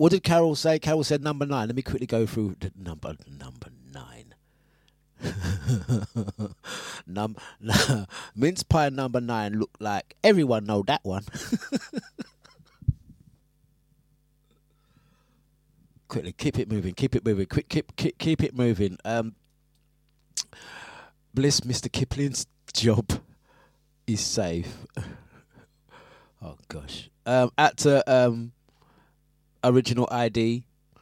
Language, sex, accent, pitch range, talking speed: English, male, British, 110-150 Hz, 110 wpm